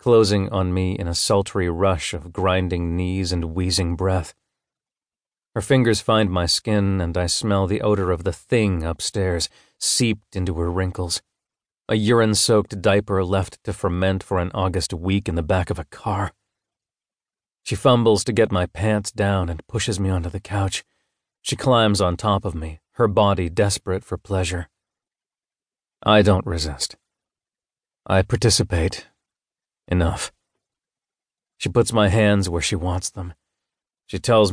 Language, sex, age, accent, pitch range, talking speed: English, male, 40-59, American, 85-105 Hz, 150 wpm